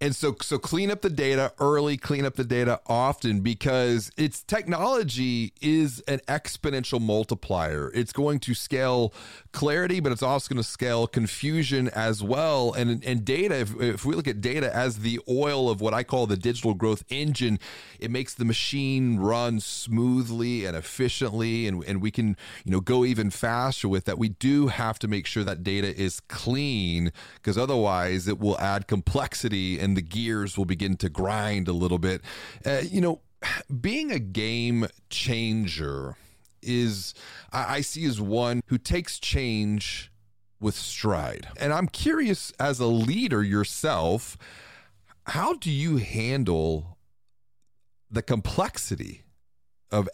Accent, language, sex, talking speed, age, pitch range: American, English, male, 155 wpm, 30-49, 100-130 Hz